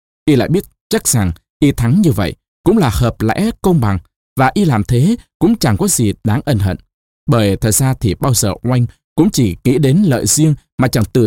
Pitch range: 105-150 Hz